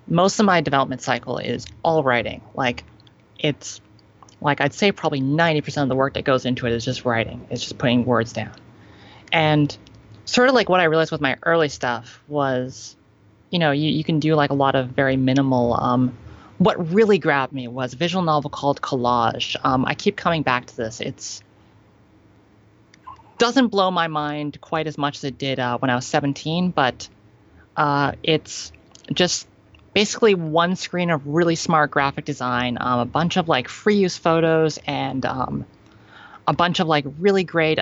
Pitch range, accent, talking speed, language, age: 120-160 Hz, American, 185 wpm, English, 30-49